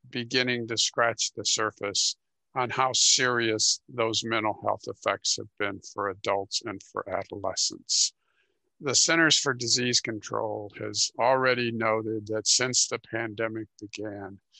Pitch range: 105-120 Hz